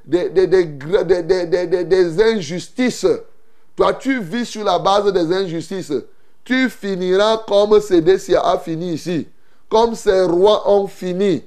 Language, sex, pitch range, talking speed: French, male, 170-240 Hz, 150 wpm